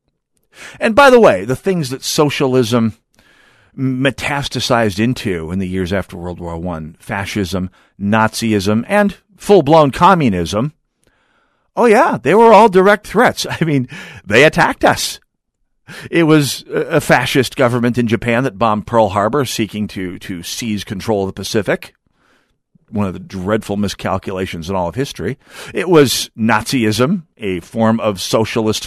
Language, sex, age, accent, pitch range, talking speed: English, male, 50-69, American, 105-165 Hz, 145 wpm